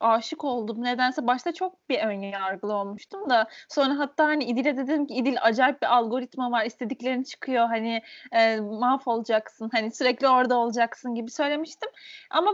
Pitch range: 245-315 Hz